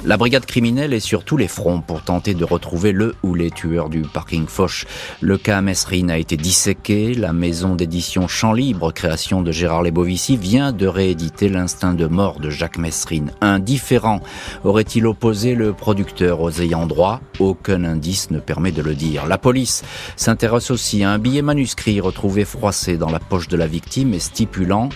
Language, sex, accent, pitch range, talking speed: French, male, French, 85-110 Hz, 185 wpm